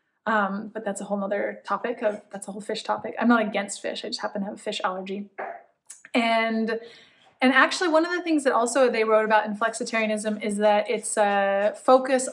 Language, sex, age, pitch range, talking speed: English, female, 20-39, 210-240 Hz, 215 wpm